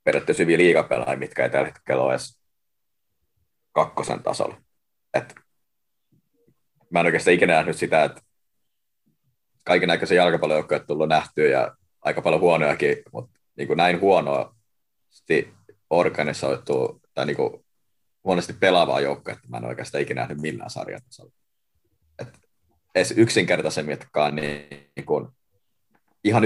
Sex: male